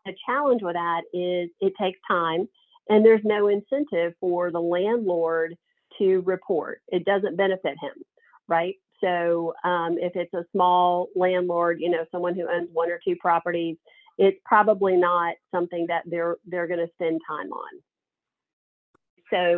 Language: English